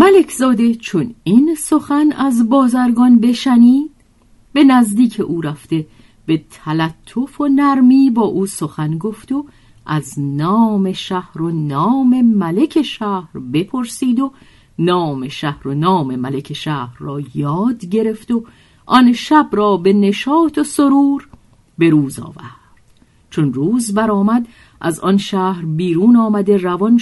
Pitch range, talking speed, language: 160-250 Hz, 135 wpm, Persian